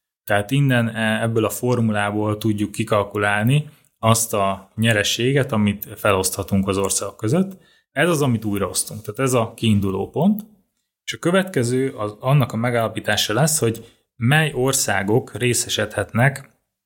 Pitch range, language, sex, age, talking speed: 105-125 Hz, Hungarian, male, 20-39, 130 wpm